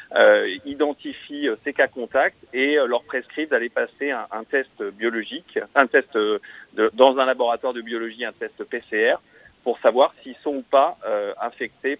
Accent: French